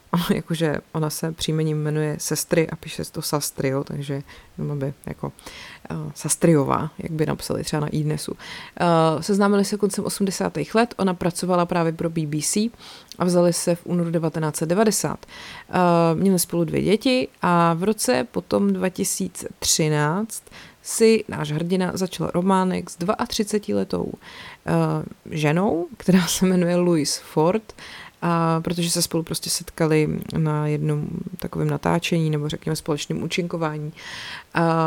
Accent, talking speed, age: native, 135 wpm, 30-49